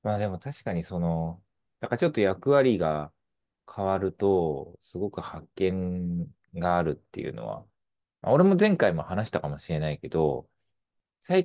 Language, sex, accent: Japanese, male, native